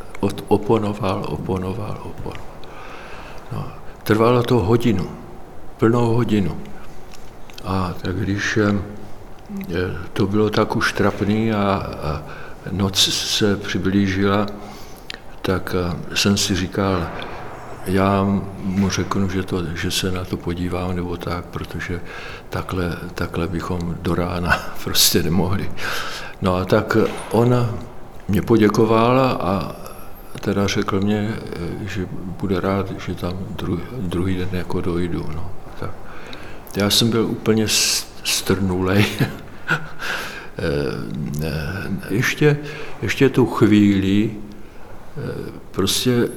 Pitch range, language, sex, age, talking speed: 90-110 Hz, Czech, male, 60-79, 100 wpm